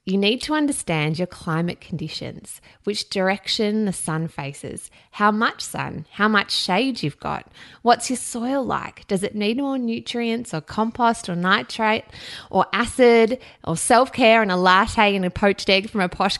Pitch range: 170-230 Hz